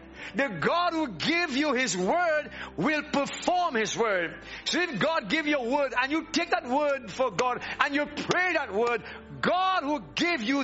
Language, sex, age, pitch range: English, male, 60-79, 225-300 Hz